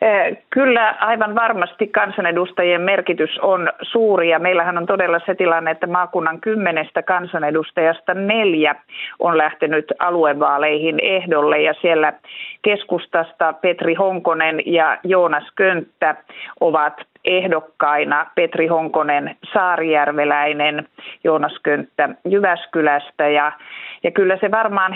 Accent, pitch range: native, 155-185 Hz